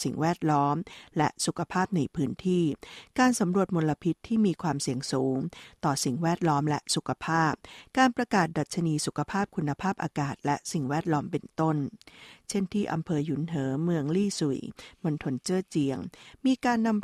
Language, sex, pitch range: Thai, female, 145-185 Hz